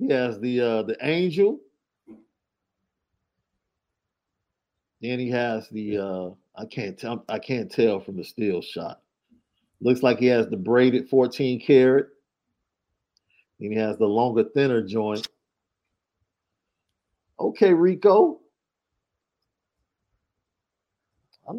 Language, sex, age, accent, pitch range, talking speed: English, male, 50-69, American, 95-130 Hz, 110 wpm